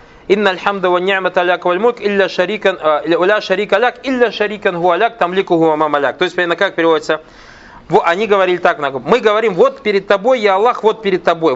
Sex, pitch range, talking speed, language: male, 170-230 Hz, 95 wpm, Russian